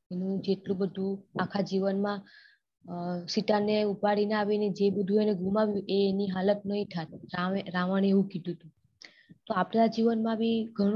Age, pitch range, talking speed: 20-39, 185-210 Hz, 155 wpm